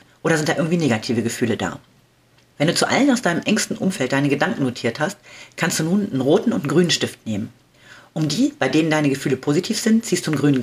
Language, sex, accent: German, female, German